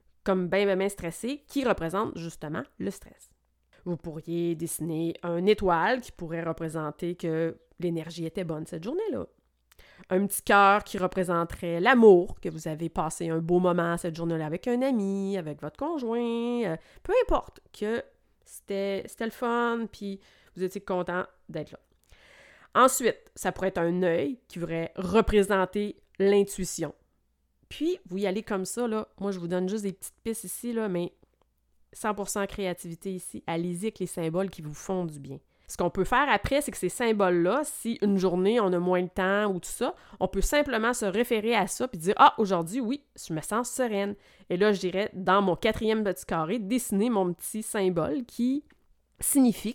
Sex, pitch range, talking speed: female, 170-220 Hz, 185 wpm